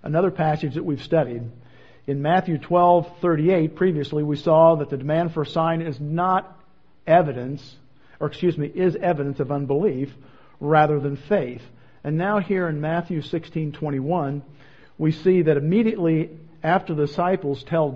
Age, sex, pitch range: 50-69, male, 145-175 Hz